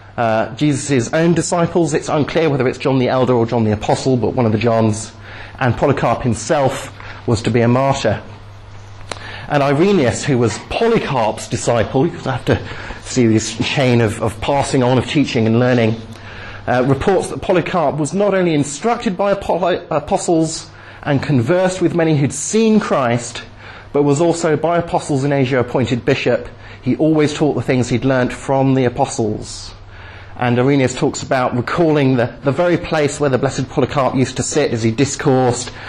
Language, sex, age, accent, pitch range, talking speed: English, male, 40-59, British, 110-145 Hz, 175 wpm